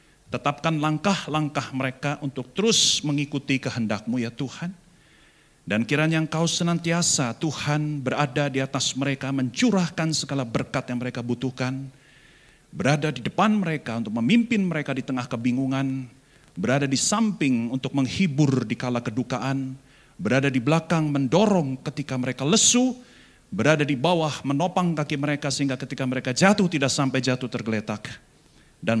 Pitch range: 125-155 Hz